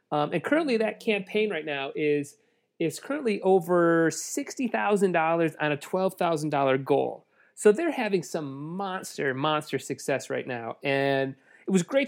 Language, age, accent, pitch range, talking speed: English, 30-49, American, 135-200 Hz, 145 wpm